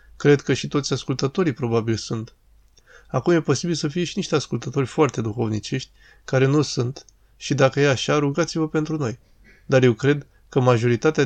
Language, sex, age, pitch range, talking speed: Romanian, male, 20-39, 115-145 Hz, 170 wpm